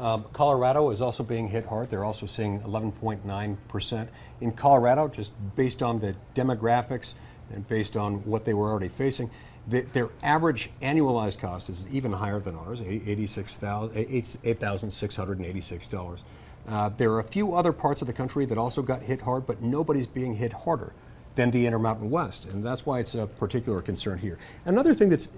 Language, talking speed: English, 165 wpm